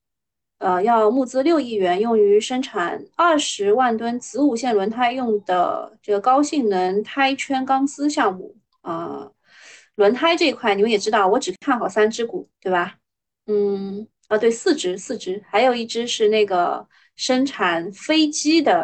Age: 20-39